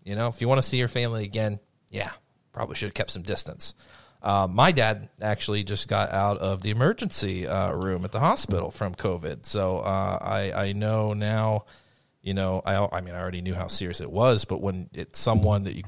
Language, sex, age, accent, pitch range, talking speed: English, male, 30-49, American, 95-110 Hz, 220 wpm